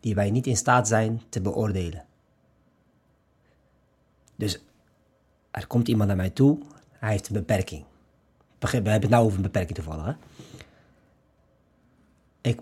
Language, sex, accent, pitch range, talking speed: Dutch, male, Dutch, 105-140 Hz, 140 wpm